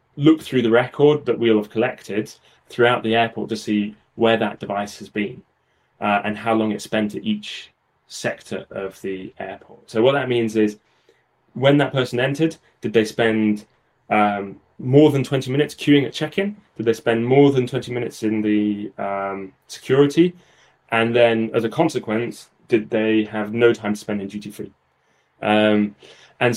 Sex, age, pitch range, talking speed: male, 20-39, 105-135 Hz, 170 wpm